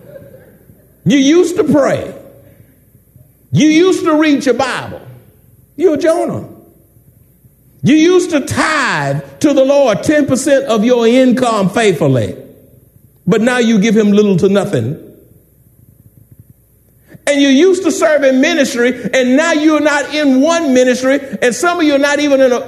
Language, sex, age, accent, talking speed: English, male, 60-79, American, 140 wpm